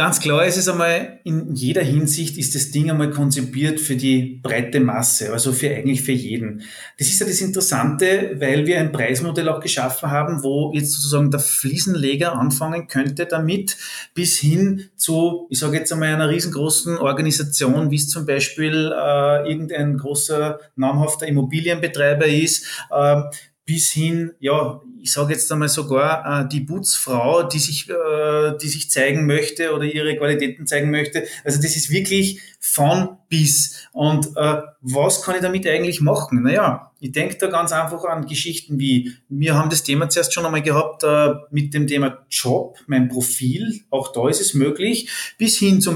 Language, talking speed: German, 170 wpm